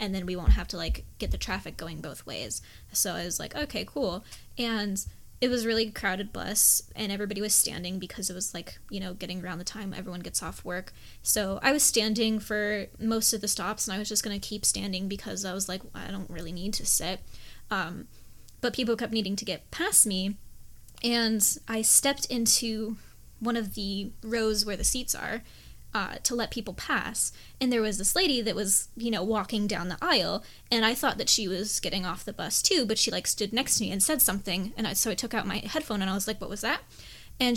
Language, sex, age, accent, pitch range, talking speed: English, female, 10-29, American, 200-245 Hz, 235 wpm